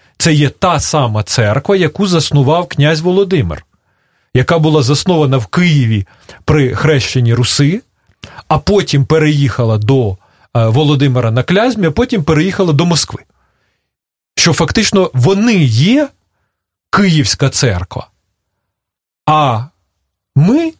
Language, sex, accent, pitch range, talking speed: Russian, male, native, 120-175 Hz, 105 wpm